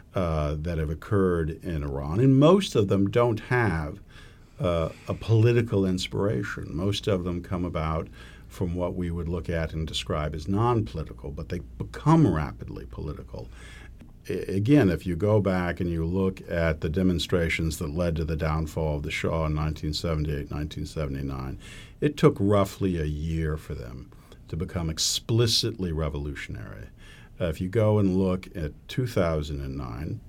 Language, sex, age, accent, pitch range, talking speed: English, male, 50-69, American, 75-100 Hz, 150 wpm